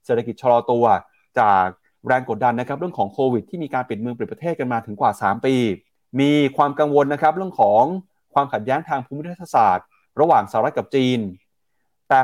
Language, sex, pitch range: Thai, male, 120-155 Hz